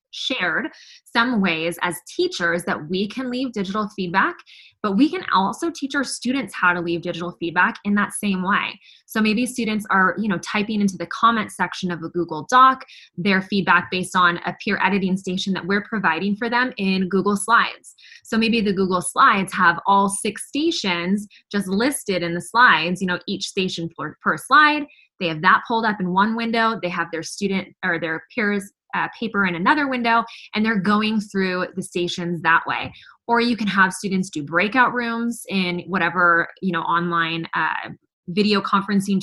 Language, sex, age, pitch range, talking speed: English, female, 20-39, 180-230 Hz, 190 wpm